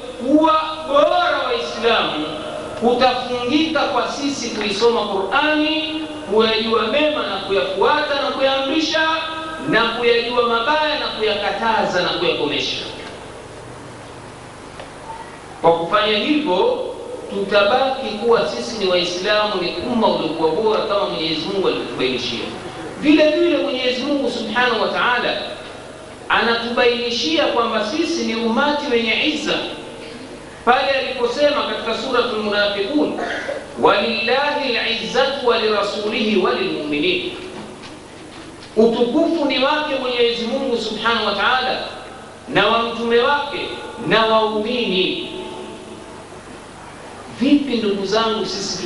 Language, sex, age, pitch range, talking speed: Swahili, male, 50-69, 215-290 Hz, 95 wpm